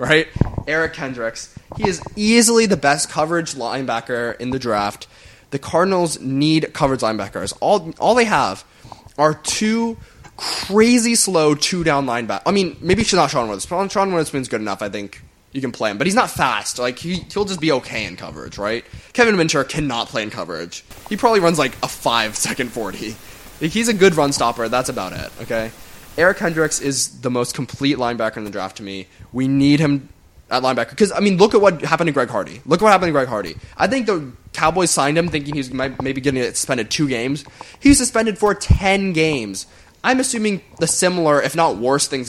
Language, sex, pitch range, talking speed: English, male, 115-170 Hz, 205 wpm